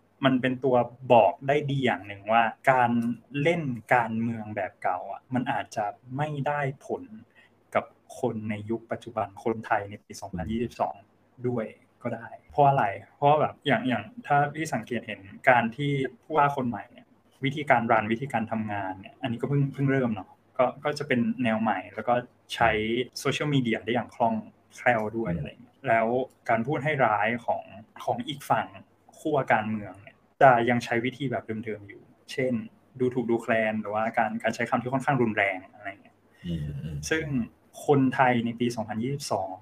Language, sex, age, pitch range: Thai, male, 20-39, 110-130 Hz